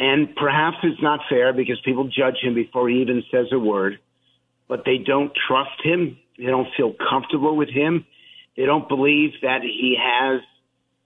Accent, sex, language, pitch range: American, male, English, 130-150 Hz